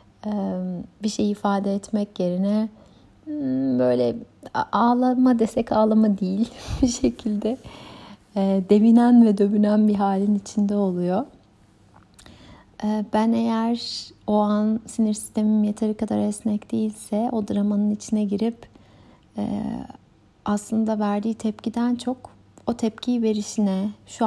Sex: female